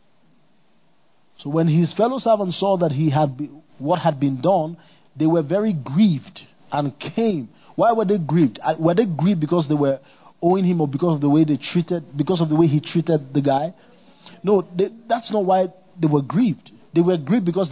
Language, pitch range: English, 140-185 Hz